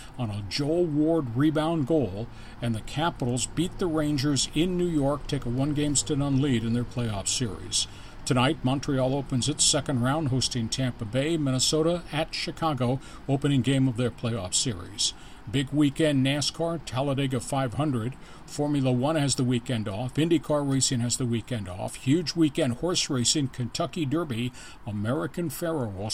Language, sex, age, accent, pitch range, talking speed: English, male, 50-69, American, 120-150 Hz, 160 wpm